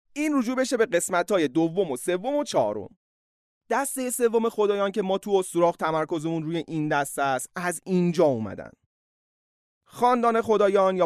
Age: 30-49